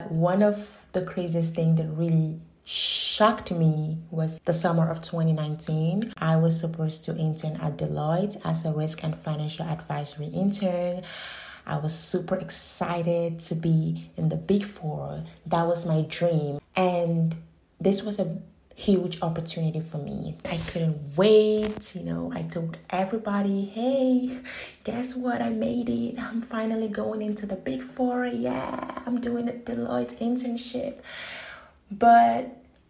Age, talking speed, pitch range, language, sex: 30-49, 140 wpm, 155-190 Hz, English, female